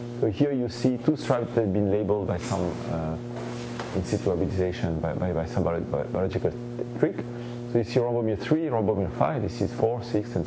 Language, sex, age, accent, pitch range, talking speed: English, male, 40-59, French, 100-120 Hz, 195 wpm